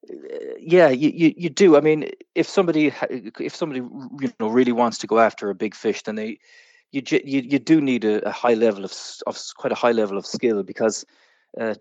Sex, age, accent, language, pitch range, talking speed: male, 20-39, Irish, English, 110-155 Hz, 215 wpm